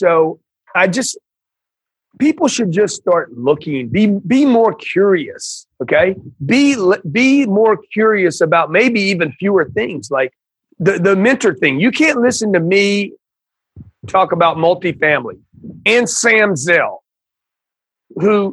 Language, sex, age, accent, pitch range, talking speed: English, male, 40-59, American, 165-215 Hz, 125 wpm